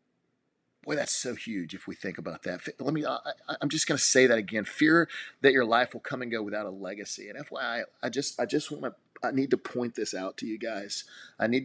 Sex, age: male, 40-59